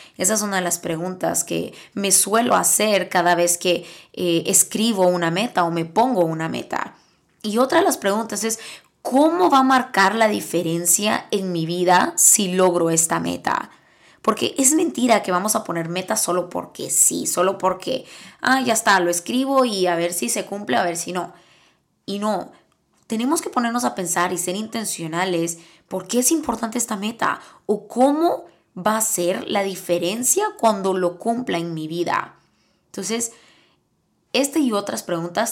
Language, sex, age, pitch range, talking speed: Spanish, female, 20-39, 175-225 Hz, 175 wpm